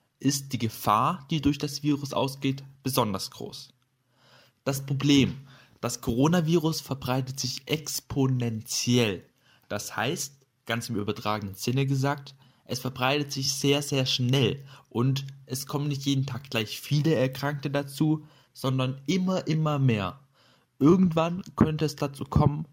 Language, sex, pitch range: German, male, 125-145 Hz